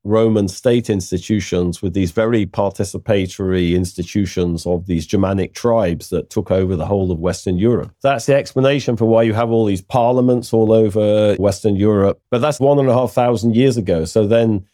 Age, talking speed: 40-59, 185 wpm